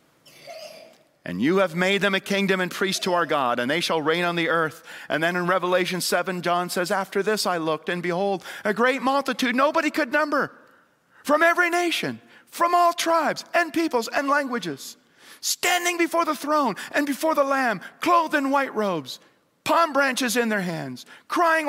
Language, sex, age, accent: English, male, 50-69, American